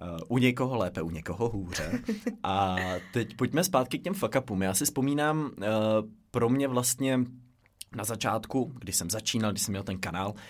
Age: 20-39